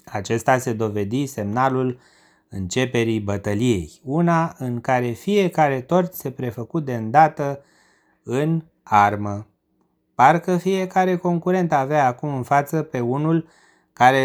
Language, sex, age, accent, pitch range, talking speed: Romanian, male, 30-49, native, 110-165 Hz, 115 wpm